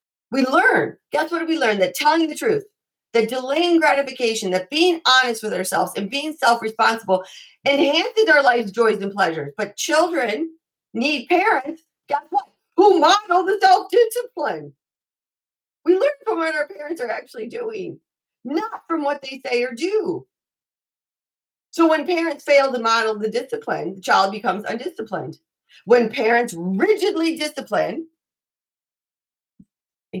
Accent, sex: American, female